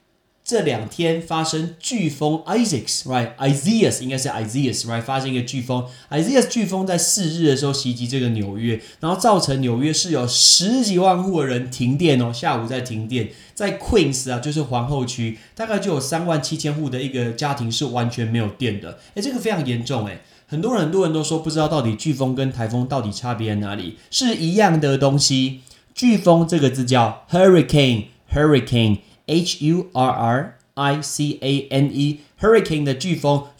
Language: Chinese